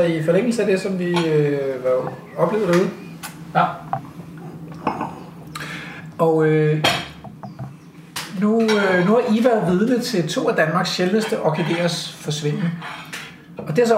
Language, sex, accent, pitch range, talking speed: Danish, male, native, 155-190 Hz, 130 wpm